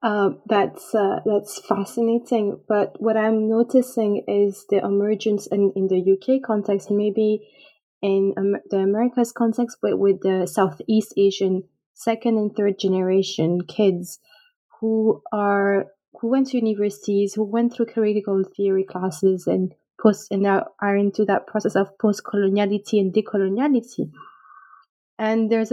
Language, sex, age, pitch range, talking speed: English, female, 20-39, 200-230 Hz, 140 wpm